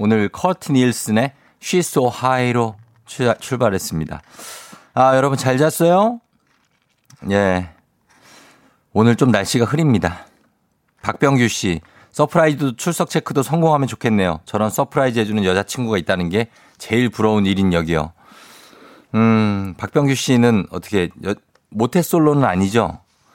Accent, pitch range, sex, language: native, 95-145 Hz, male, Korean